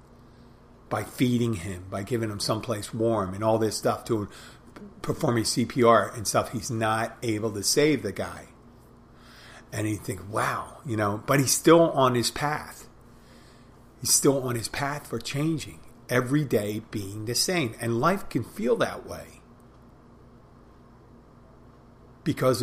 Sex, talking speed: male, 150 wpm